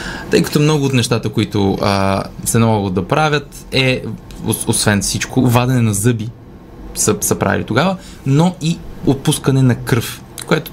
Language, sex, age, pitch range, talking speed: Bulgarian, male, 20-39, 110-145 Hz, 150 wpm